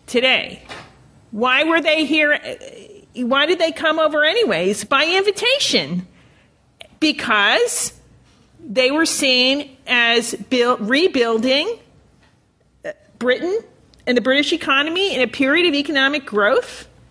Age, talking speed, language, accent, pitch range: 40-59, 105 wpm, English, American, 245-310 Hz